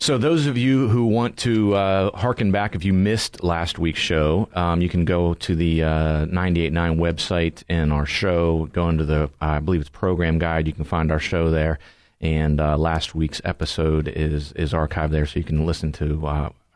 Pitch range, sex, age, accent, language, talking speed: 75-90 Hz, male, 40-59, American, English, 205 wpm